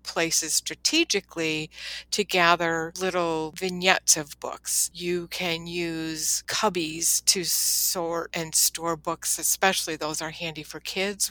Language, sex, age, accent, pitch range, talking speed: English, female, 60-79, American, 155-175 Hz, 120 wpm